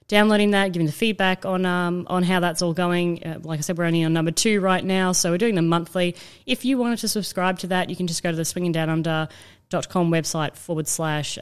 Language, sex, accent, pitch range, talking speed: English, female, Australian, 165-200 Hz, 235 wpm